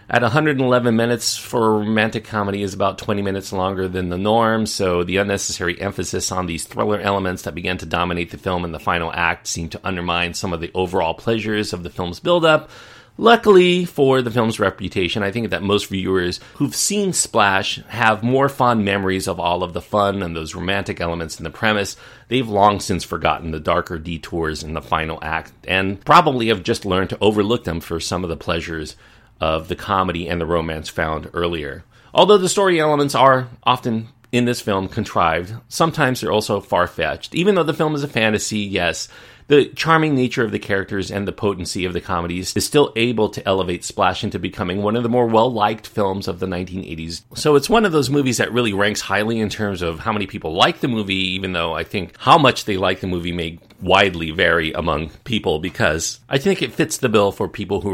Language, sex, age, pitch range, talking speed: English, male, 40-59, 90-115 Hz, 210 wpm